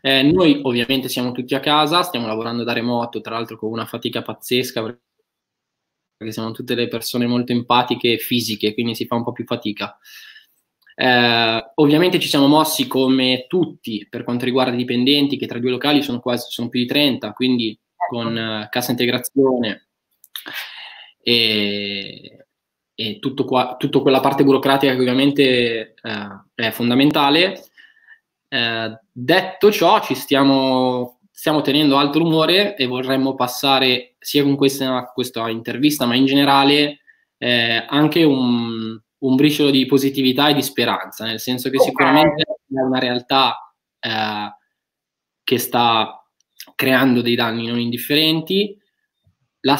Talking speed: 140 wpm